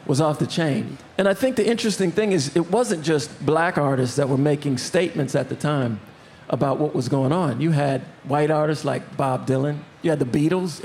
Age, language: 50-69, English